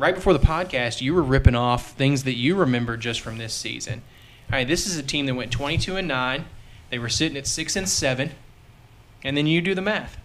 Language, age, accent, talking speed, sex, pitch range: English, 20-39, American, 235 wpm, male, 120-150 Hz